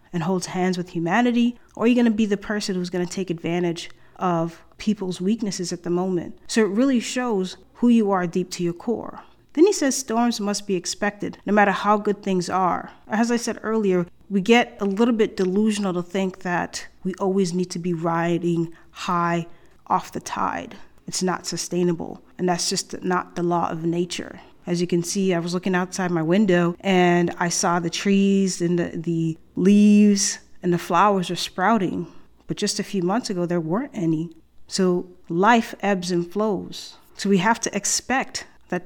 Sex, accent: female, American